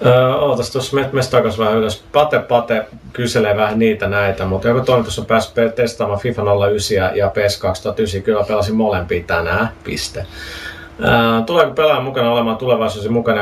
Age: 30-49